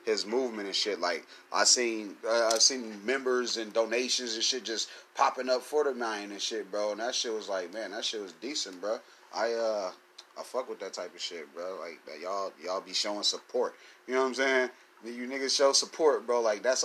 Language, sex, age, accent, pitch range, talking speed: English, male, 30-49, American, 110-140 Hz, 230 wpm